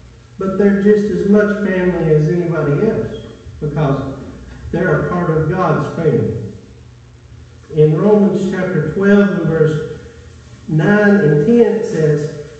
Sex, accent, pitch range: male, American, 145-205 Hz